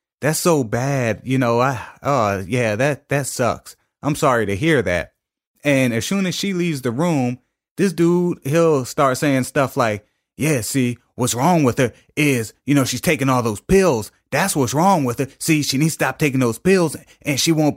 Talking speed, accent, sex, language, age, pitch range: 210 wpm, American, male, English, 30-49, 115-150 Hz